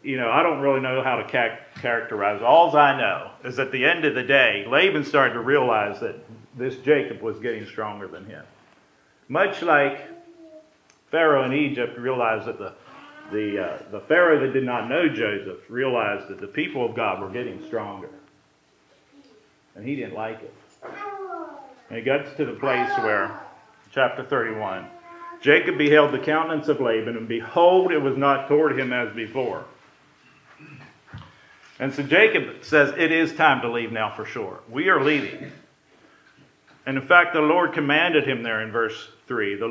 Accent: American